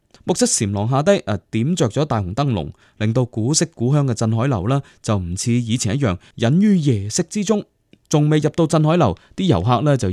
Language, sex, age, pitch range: Chinese, male, 20-39, 105-150 Hz